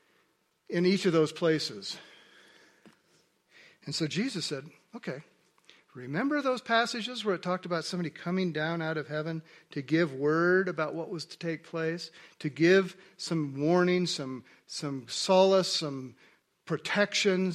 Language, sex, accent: English, male, American